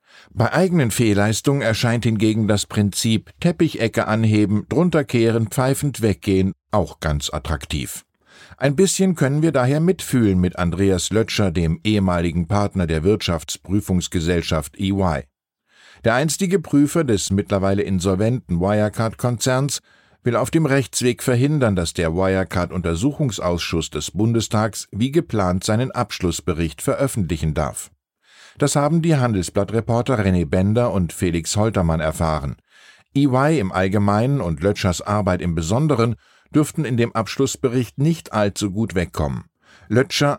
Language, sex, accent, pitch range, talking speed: German, male, German, 90-125 Hz, 120 wpm